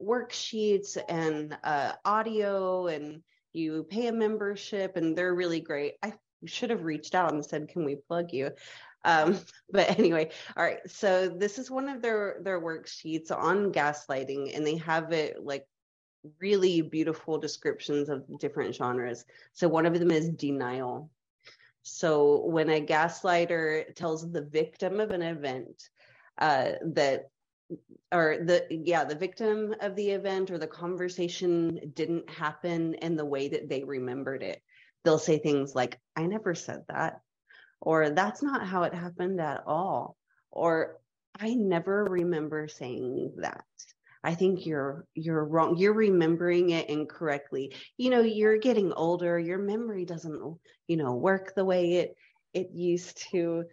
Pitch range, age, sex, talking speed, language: 155-190 Hz, 30-49, female, 150 wpm, English